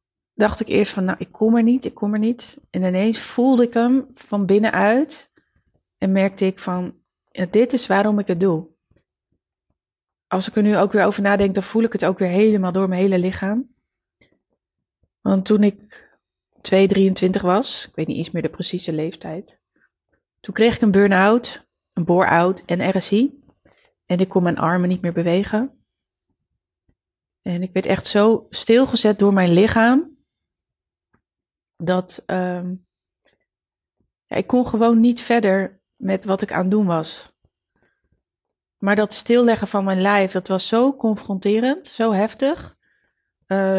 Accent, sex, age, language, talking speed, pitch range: Dutch, female, 20-39, Dutch, 160 wpm, 190-225 Hz